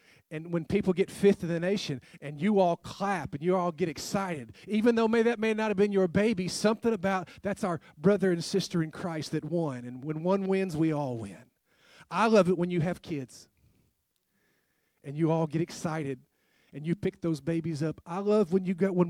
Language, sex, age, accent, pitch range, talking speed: English, male, 40-59, American, 160-205 Hz, 215 wpm